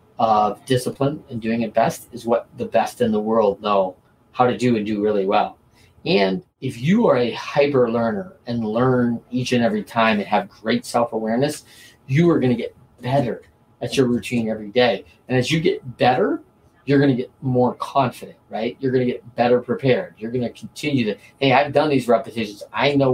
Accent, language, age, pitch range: American, English, 30-49, 120-150 Hz